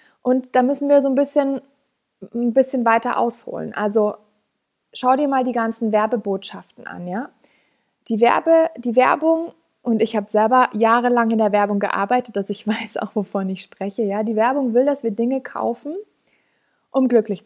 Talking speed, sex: 170 wpm, female